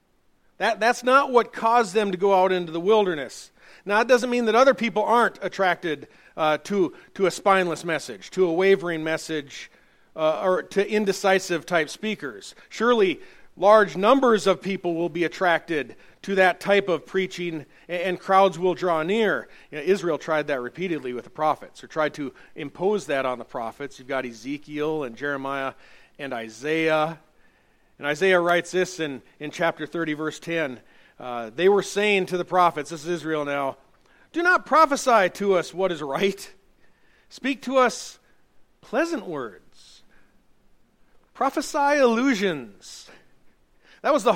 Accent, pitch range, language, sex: American, 155-215 Hz, English, male